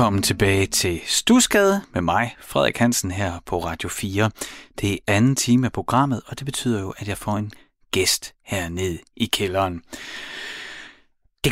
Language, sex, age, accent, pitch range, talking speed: Danish, male, 30-49, native, 90-125 Hz, 160 wpm